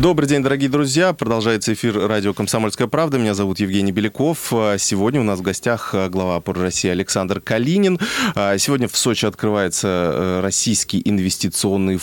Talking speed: 145 wpm